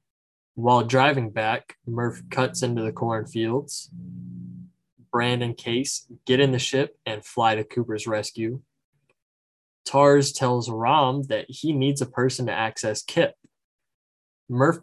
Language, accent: English, American